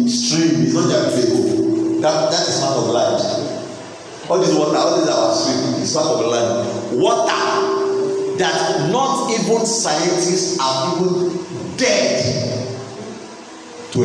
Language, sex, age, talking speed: English, male, 50-69, 125 wpm